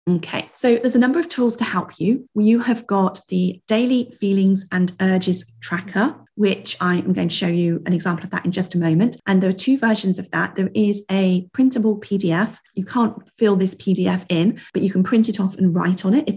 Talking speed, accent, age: 230 wpm, British, 30-49